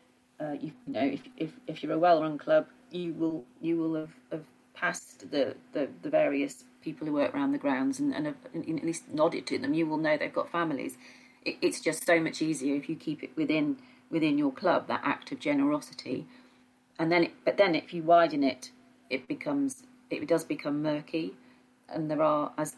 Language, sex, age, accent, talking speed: English, female, 40-59, British, 210 wpm